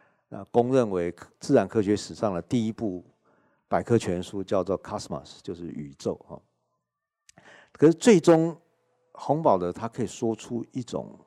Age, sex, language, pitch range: 50-69, male, Chinese, 90-125 Hz